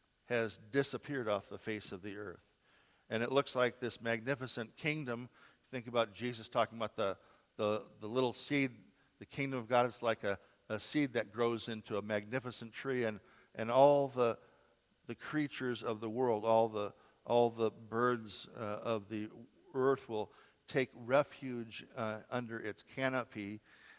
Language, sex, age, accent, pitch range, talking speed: English, male, 50-69, American, 110-130 Hz, 165 wpm